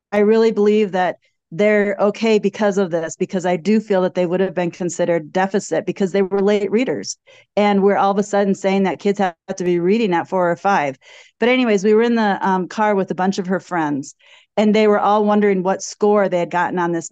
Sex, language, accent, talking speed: female, English, American, 240 wpm